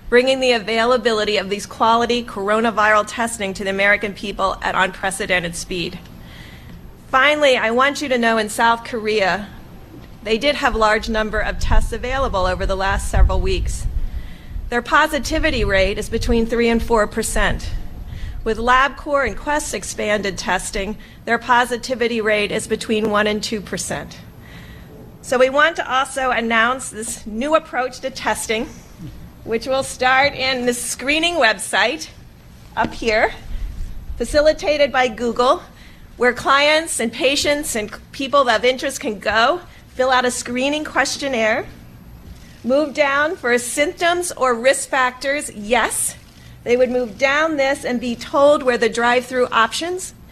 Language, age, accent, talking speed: English, 40-59, American, 140 wpm